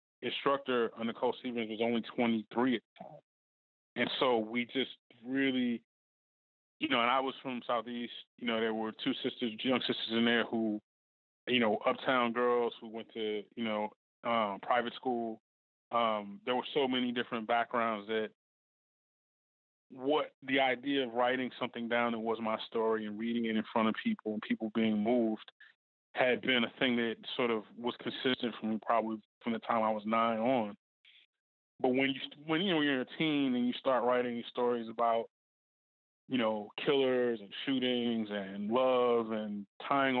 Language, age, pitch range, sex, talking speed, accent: English, 20-39, 110-125 Hz, male, 180 wpm, American